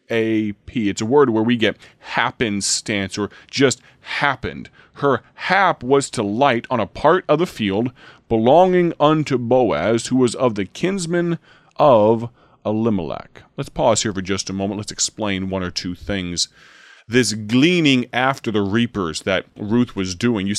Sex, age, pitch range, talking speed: male, 30-49, 100-125 Hz, 165 wpm